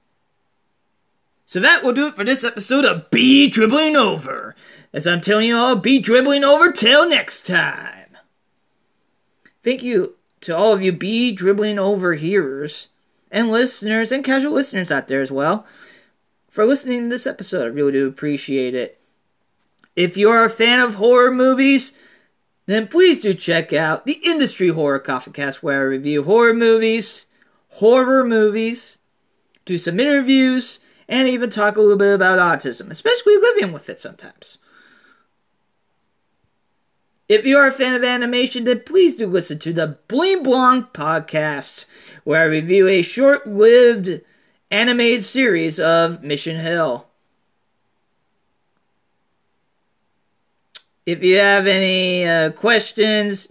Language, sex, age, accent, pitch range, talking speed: English, male, 40-59, American, 175-250 Hz, 140 wpm